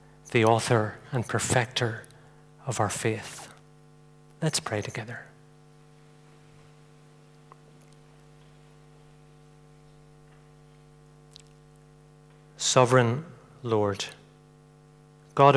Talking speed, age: 50 wpm, 40-59